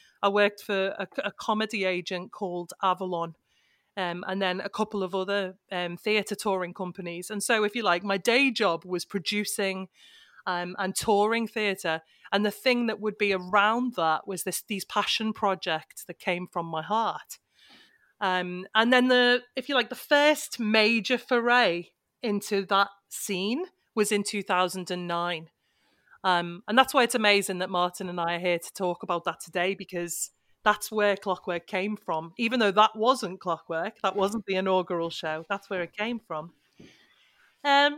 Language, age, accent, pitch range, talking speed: English, 30-49, British, 185-225 Hz, 170 wpm